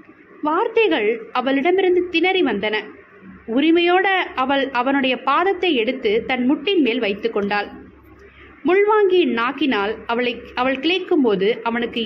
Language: Tamil